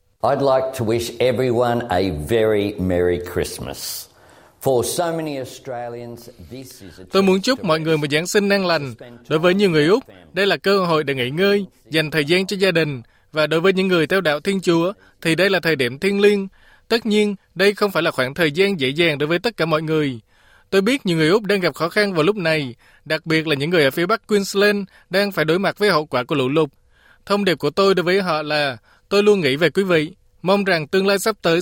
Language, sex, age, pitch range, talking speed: Vietnamese, male, 20-39, 125-195 Hz, 245 wpm